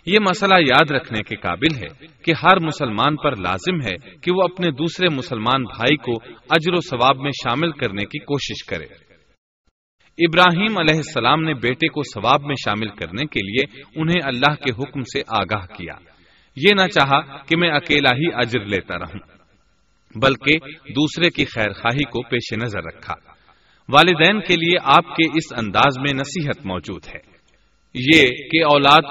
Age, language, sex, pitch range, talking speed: 40-59, Urdu, male, 115-165 Hz, 165 wpm